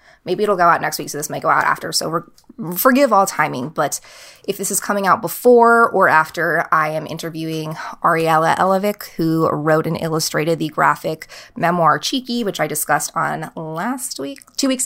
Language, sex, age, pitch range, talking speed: English, female, 20-39, 170-230 Hz, 185 wpm